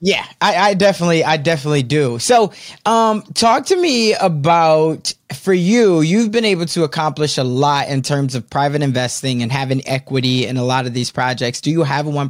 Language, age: English, 20-39